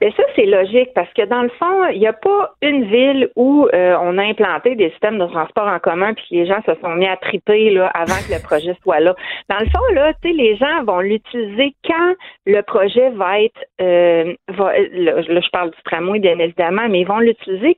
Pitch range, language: 170-245 Hz, French